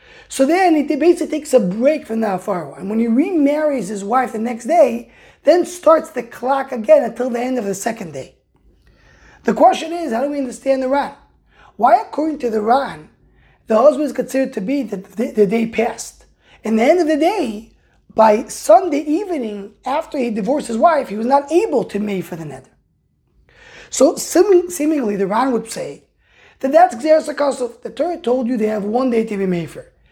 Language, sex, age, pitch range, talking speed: English, male, 20-39, 220-300 Hz, 200 wpm